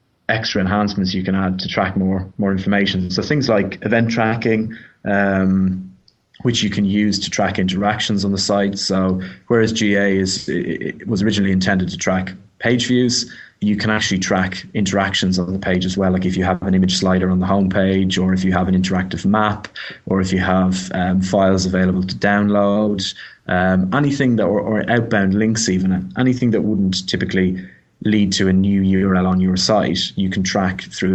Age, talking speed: 20-39, 190 wpm